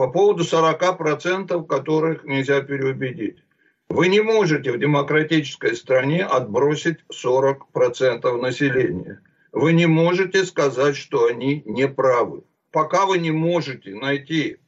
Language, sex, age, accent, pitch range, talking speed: Russian, male, 60-79, native, 140-165 Hz, 115 wpm